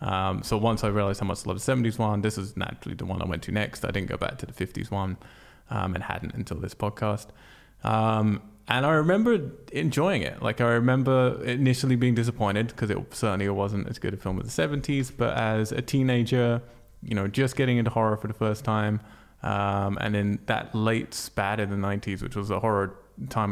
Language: English